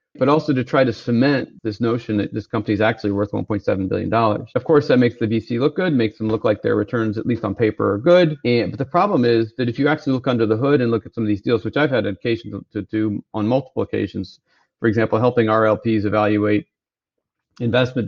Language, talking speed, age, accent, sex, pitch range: English, 235 wpm, 40-59, American, male, 110-130 Hz